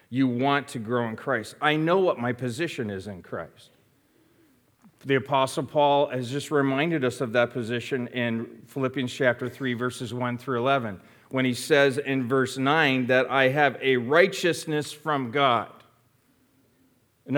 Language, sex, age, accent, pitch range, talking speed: English, male, 40-59, American, 135-175 Hz, 160 wpm